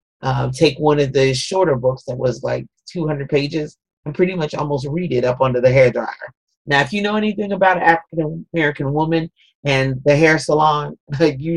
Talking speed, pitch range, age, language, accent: 200 wpm, 130-160 Hz, 40-59, English, American